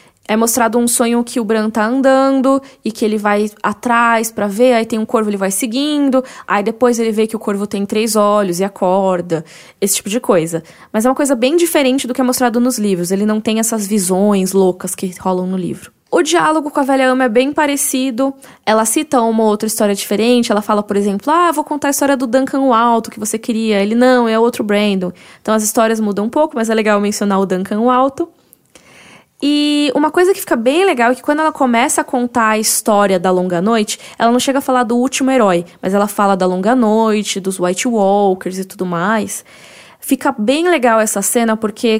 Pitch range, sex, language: 200-250 Hz, female, Portuguese